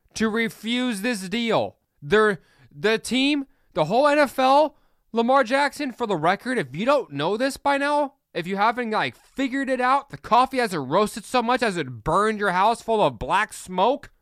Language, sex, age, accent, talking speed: English, male, 20-39, American, 180 wpm